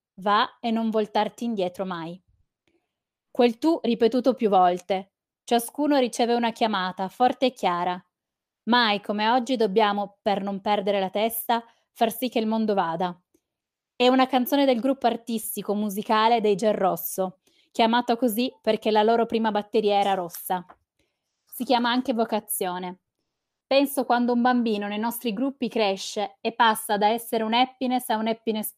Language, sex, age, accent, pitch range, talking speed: Italian, female, 20-39, native, 205-245 Hz, 150 wpm